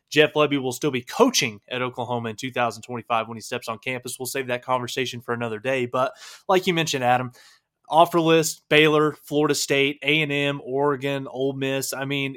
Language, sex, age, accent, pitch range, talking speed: English, male, 20-39, American, 125-150 Hz, 195 wpm